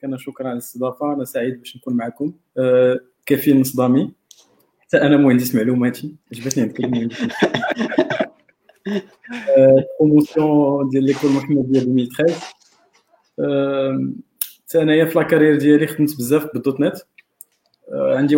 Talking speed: 125 wpm